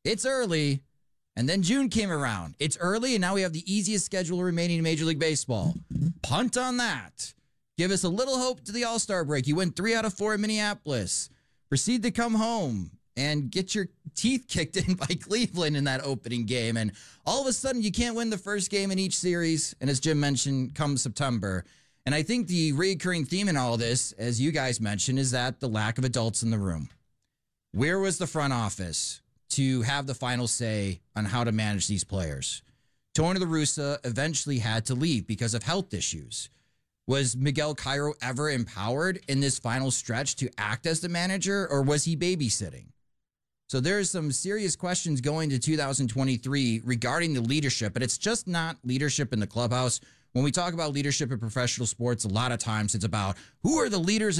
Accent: American